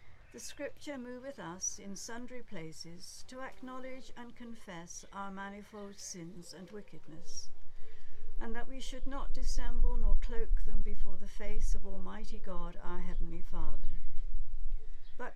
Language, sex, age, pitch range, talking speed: English, female, 60-79, 180-235 Hz, 135 wpm